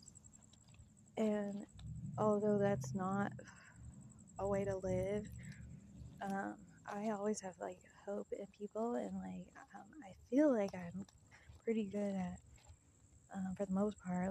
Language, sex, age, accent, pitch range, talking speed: English, female, 20-39, American, 175-210 Hz, 130 wpm